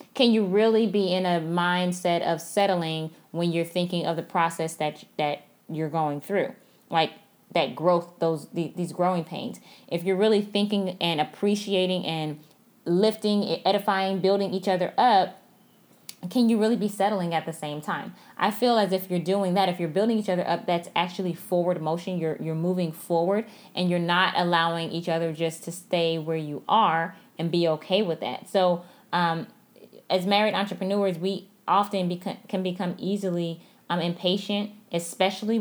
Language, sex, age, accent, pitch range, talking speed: English, female, 10-29, American, 170-200 Hz, 170 wpm